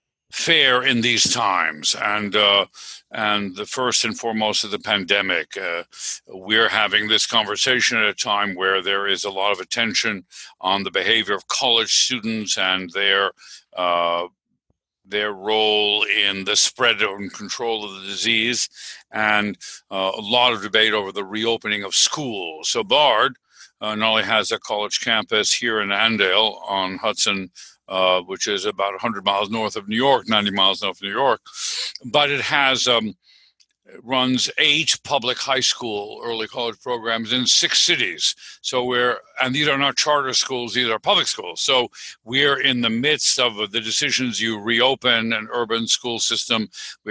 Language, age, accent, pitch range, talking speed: English, 50-69, American, 105-130 Hz, 165 wpm